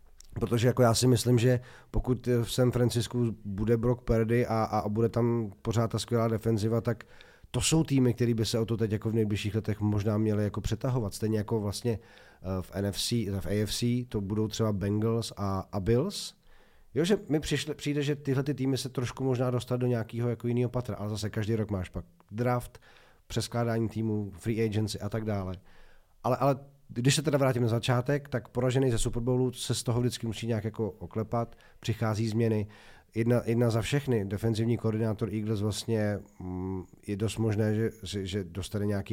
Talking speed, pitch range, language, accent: 180 wpm, 105-120 Hz, Czech, native